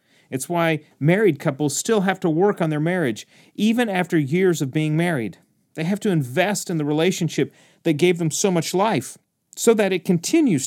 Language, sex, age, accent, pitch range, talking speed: English, male, 40-59, American, 145-185 Hz, 190 wpm